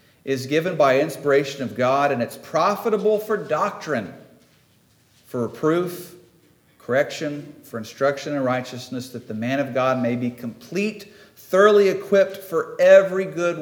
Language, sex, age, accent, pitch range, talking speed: English, male, 50-69, American, 115-170 Hz, 135 wpm